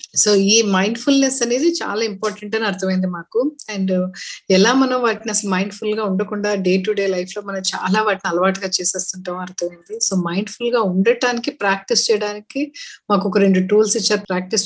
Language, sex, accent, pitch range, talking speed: Telugu, female, native, 195-245 Hz, 175 wpm